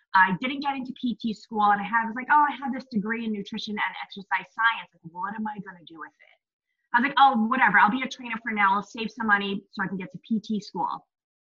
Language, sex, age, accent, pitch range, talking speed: English, female, 20-39, American, 195-255 Hz, 265 wpm